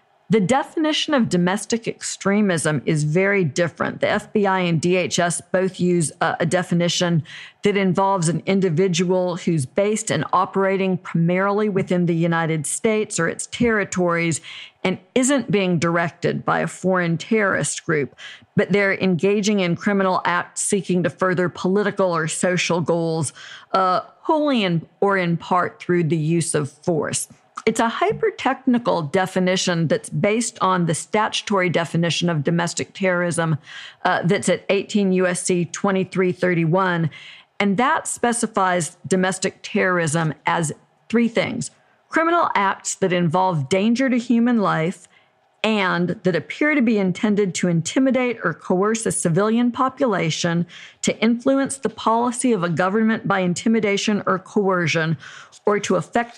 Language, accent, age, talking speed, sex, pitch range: English, American, 50-69, 135 wpm, female, 175-215 Hz